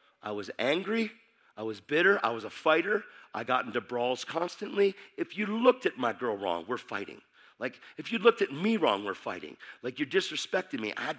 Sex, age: male, 50-69